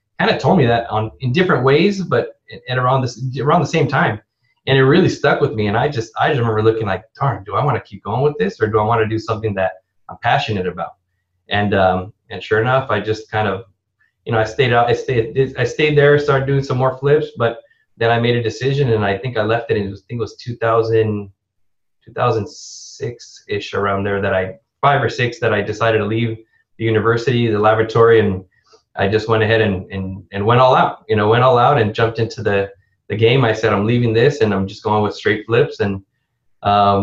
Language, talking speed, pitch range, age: English, 235 wpm, 105-125 Hz, 20-39